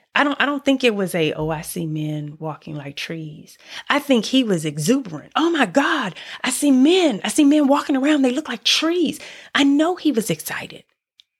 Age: 30-49